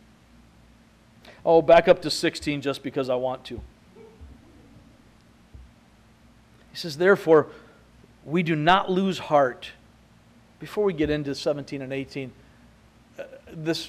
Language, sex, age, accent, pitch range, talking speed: English, male, 40-59, American, 140-200 Hz, 110 wpm